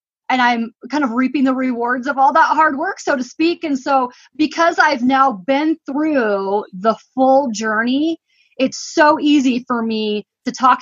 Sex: female